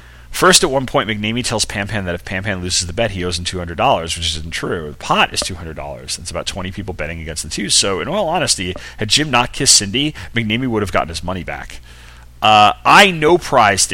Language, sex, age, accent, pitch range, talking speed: English, male, 30-49, American, 85-115 Hz, 220 wpm